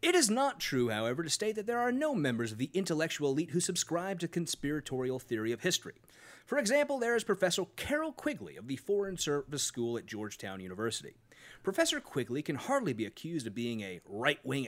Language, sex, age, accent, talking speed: English, male, 30-49, American, 195 wpm